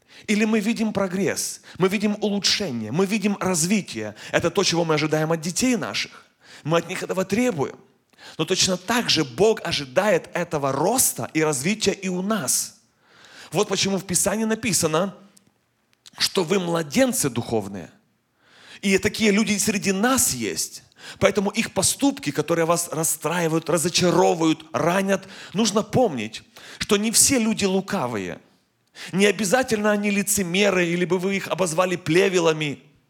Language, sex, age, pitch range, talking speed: Russian, male, 30-49, 160-205 Hz, 140 wpm